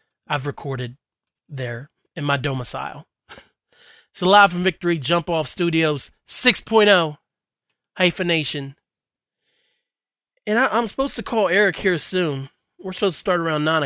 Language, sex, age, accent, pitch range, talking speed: English, male, 20-39, American, 140-185 Hz, 135 wpm